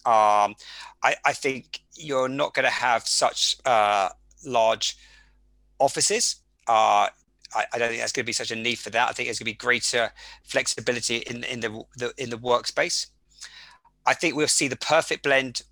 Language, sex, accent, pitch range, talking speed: English, male, British, 120-155 Hz, 180 wpm